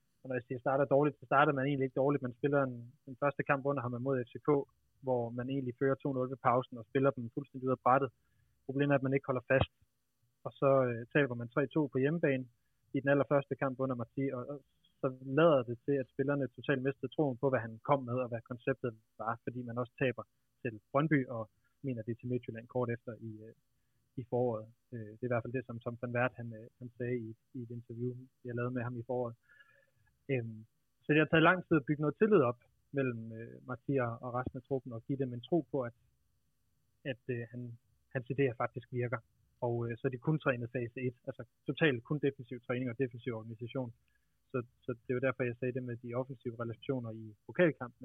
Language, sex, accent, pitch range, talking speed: Danish, male, native, 120-140 Hz, 220 wpm